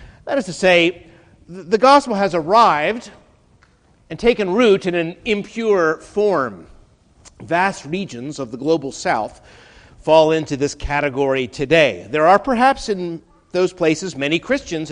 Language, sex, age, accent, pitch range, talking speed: English, male, 50-69, American, 145-195 Hz, 135 wpm